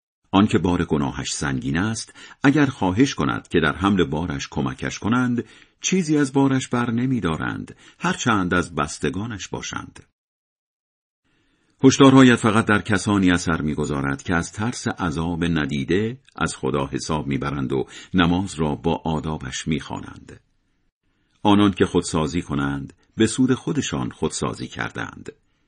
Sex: male